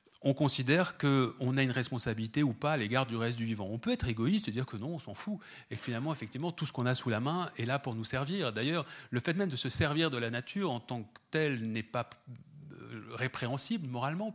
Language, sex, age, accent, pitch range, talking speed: French, male, 40-59, French, 120-150 Hz, 245 wpm